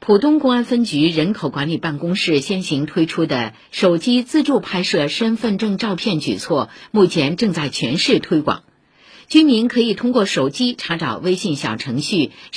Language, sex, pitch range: Chinese, female, 165-245 Hz